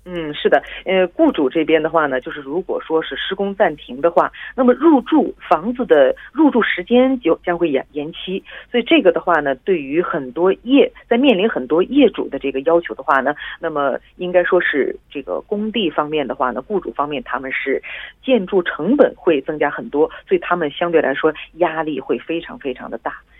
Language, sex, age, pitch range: Korean, female, 40-59, 155-245 Hz